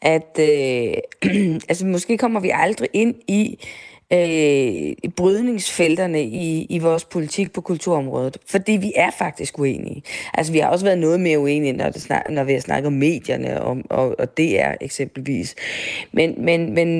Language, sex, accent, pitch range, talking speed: Danish, female, native, 160-215 Hz, 165 wpm